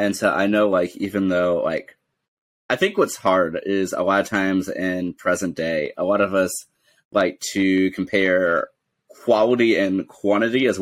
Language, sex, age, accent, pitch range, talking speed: English, male, 30-49, American, 90-105 Hz, 170 wpm